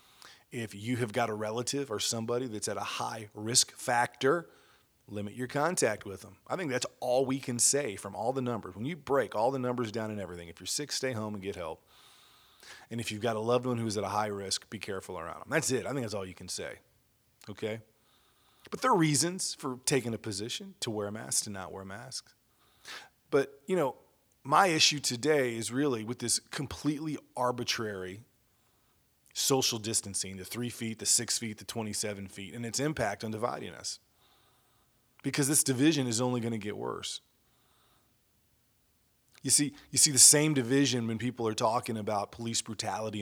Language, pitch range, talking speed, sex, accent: English, 110-130 Hz, 195 wpm, male, American